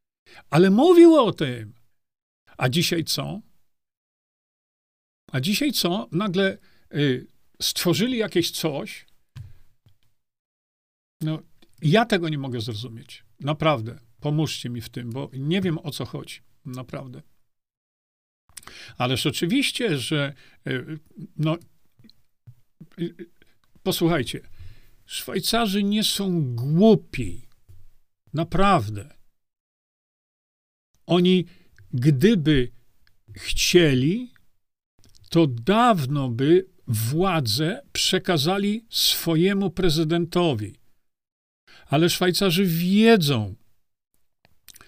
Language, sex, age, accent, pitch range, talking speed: Polish, male, 50-69, native, 120-180 Hz, 75 wpm